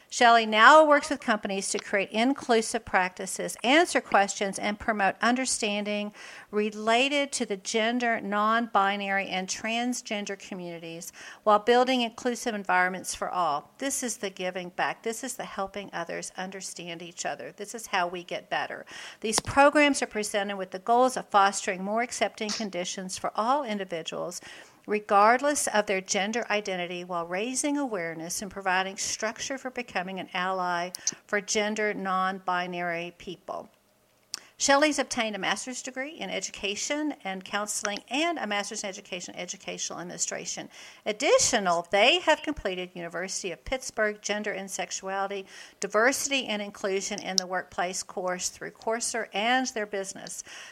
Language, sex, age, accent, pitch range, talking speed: English, female, 50-69, American, 190-235 Hz, 140 wpm